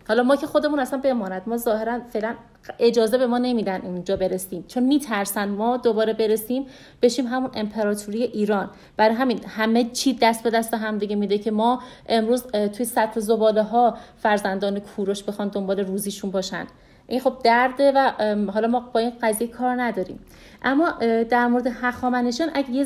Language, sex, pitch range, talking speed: Persian, female, 220-255 Hz, 170 wpm